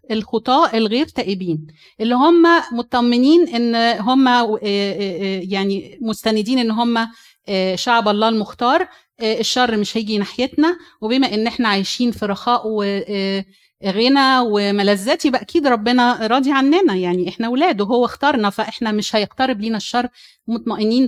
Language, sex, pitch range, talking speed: Arabic, female, 205-255 Hz, 120 wpm